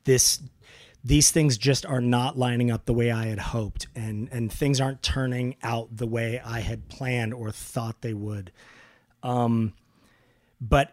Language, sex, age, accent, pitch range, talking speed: English, male, 30-49, American, 120-145 Hz, 165 wpm